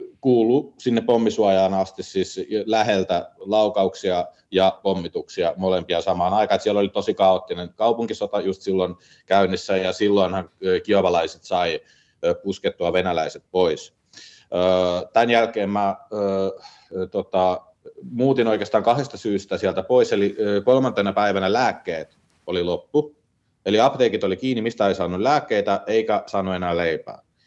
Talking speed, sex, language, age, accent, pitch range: 120 wpm, male, Finnish, 30-49, native, 90-115 Hz